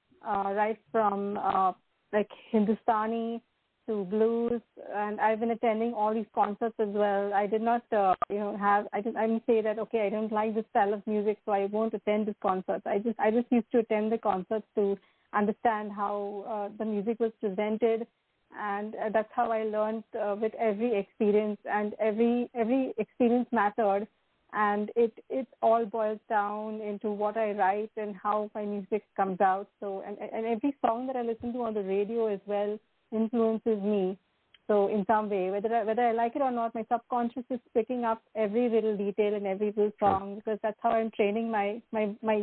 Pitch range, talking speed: 205-230 Hz, 195 wpm